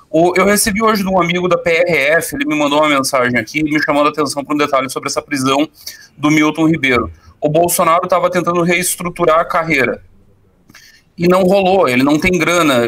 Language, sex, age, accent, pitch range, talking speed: Portuguese, male, 30-49, Brazilian, 140-180 Hz, 190 wpm